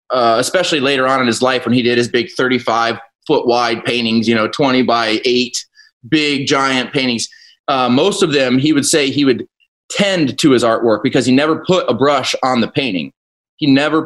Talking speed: 205 wpm